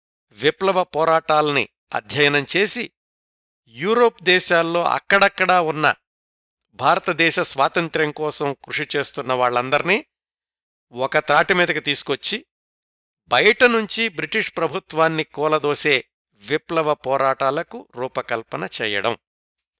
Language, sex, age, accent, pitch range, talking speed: Telugu, male, 60-79, native, 130-175 Hz, 75 wpm